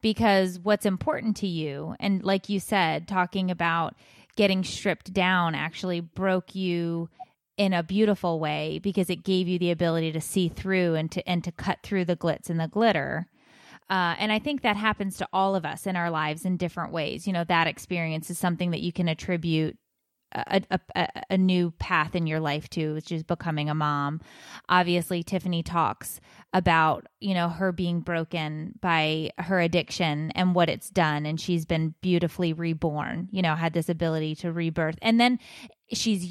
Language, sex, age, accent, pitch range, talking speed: English, female, 20-39, American, 165-190 Hz, 185 wpm